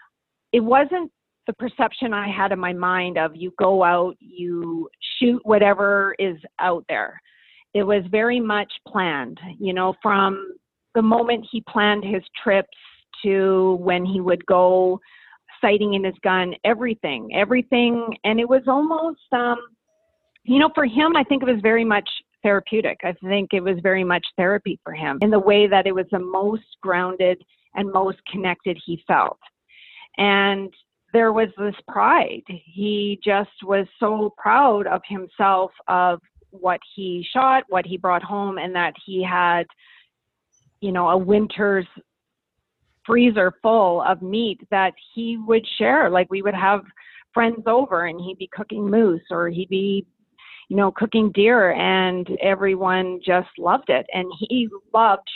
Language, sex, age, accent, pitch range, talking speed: English, female, 40-59, American, 185-225 Hz, 155 wpm